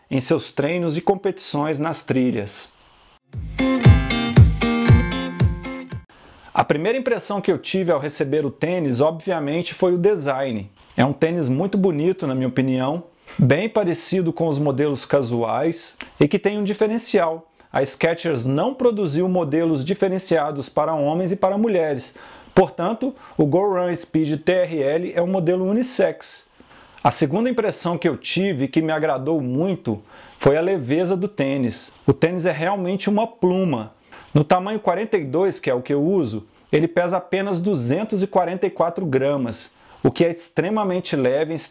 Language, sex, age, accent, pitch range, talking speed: Portuguese, male, 40-59, Brazilian, 140-185 Hz, 150 wpm